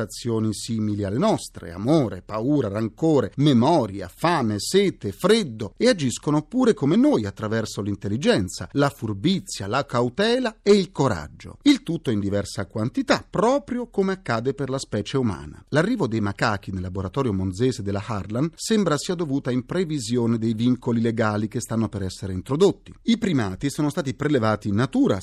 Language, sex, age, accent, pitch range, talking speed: Italian, male, 40-59, native, 105-170 Hz, 150 wpm